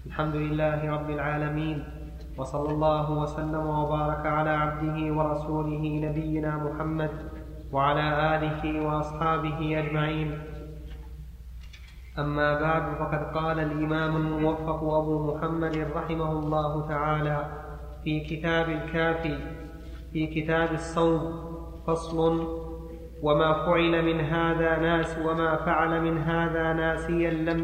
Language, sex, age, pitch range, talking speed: Arabic, male, 20-39, 155-170 Hz, 100 wpm